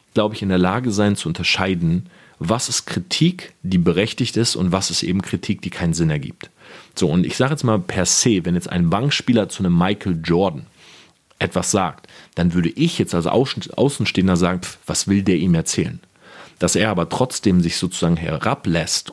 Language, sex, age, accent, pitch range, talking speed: German, male, 40-59, German, 90-105 Hz, 190 wpm